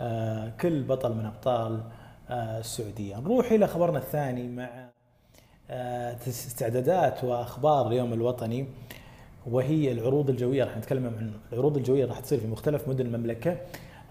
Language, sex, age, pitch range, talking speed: Arabic, male, 30-49, 120-145 Hz, 120 wpm